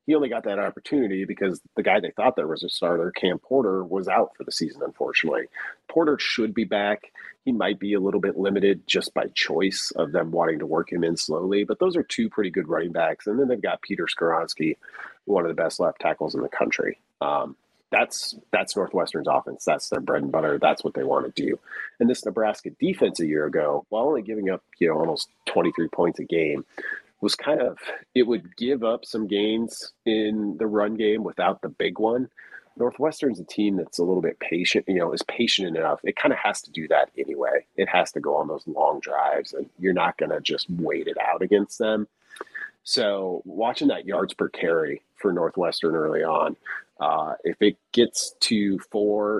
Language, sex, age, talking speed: English, male, 40-59, 210 wpm